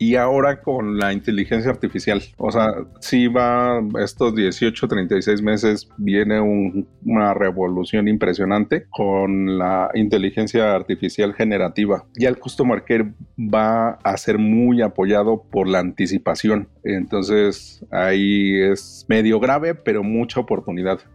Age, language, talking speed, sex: 40-59, Spanish, 125 wpm, male